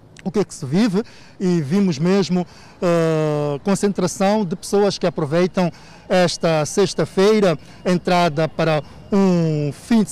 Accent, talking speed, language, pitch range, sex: Brazilian, 130 wpm, Portuguese, 165-195 Hz, male